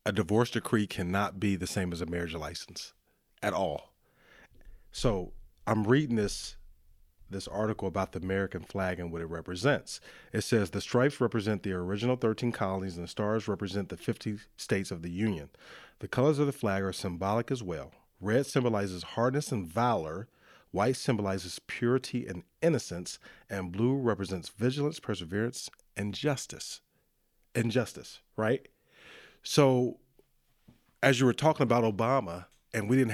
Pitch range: 95-130 Hz